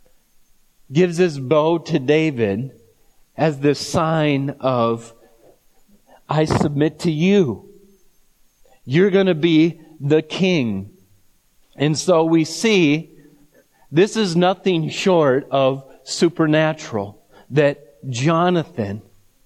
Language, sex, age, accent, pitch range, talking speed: English, male, 40-59, American, 130-170 Hz, 95 wpm